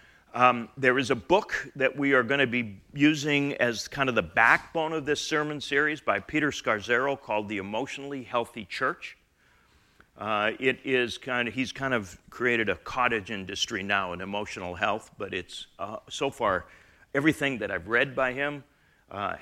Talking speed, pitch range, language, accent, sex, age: 175 wpm, 100-130 Hz, English, American, male, 40-59